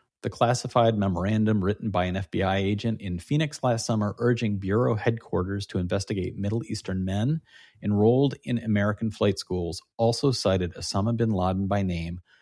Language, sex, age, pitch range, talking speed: English, male, 40-59, 90-110 Hz, 155 wpm